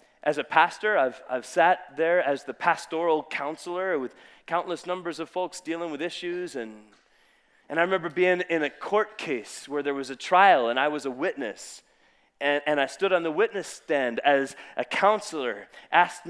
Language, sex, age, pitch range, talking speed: English, male, 30-49, 160-210 Hz, 185 wpm